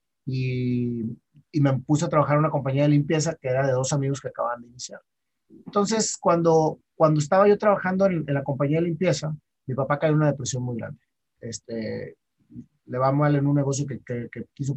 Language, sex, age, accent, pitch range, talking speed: Spanish, male, 30-49, Mexican, 130-160 Hz, 205 wpm